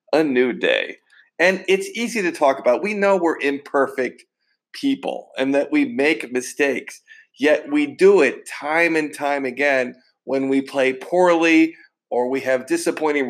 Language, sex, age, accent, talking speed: English, male, 50-69, American, 160 wpm